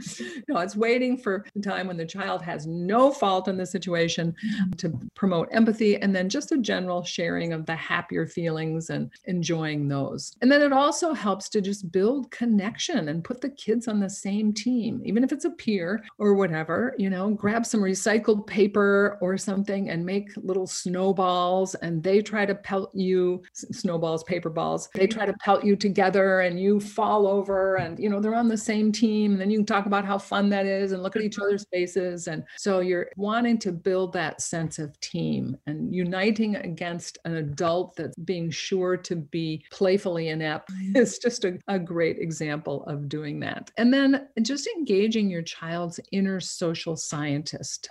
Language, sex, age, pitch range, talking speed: English, female, 50-69, 165-210 Hz, 190 wpm